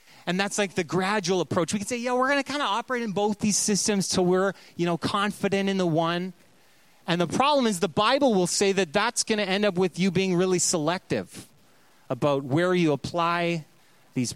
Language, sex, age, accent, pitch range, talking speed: English, male, 30-49, American, 135-185 Hz, 215 wpm